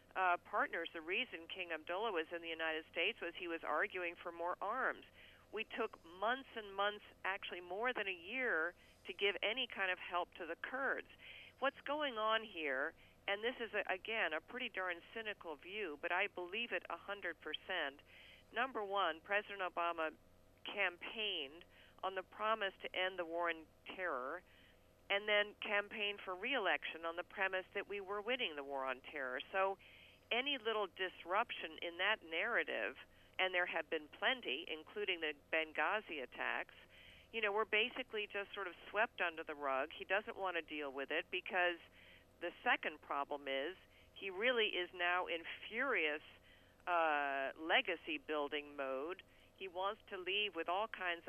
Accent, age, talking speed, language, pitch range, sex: American, 50-69, 165 wpm, English, 160-205 Hz, female